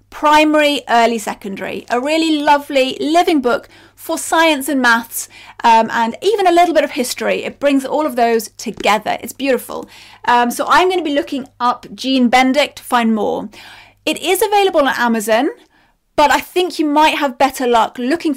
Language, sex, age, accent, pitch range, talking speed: English, female, 30-49, British, 225-300 Hz, 180 wpm